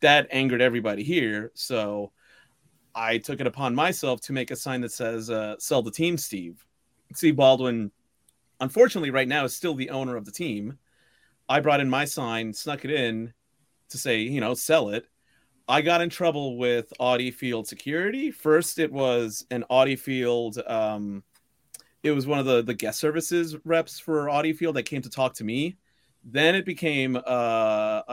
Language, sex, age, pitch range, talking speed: English, male, 30-49, 120-155 Hz, 180 wpm